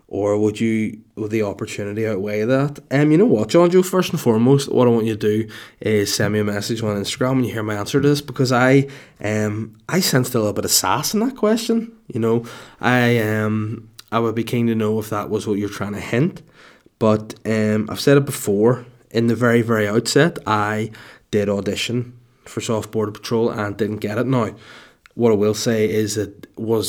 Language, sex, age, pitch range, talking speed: English, male, 20-39, 105-125 Hz, 220 wpm